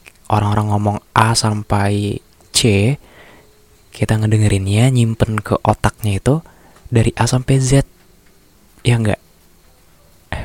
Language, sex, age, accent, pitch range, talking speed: Indonesian, male, 20-39, native, 105-120 Hz, 105 wpm